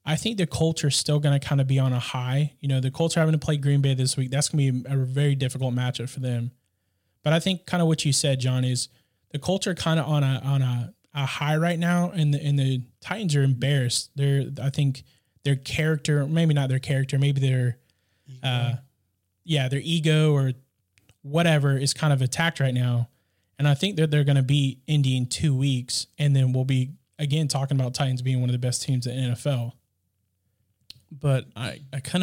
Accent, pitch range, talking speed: American, 120-140 Hz, 220 wpm